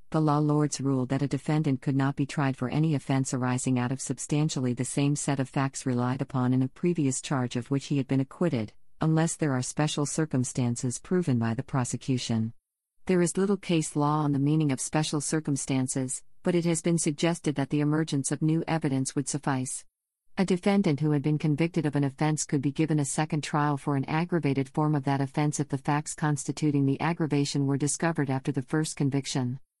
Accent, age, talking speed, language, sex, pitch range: American, 50-69, 205 wpm, English, female, 135-155 Hz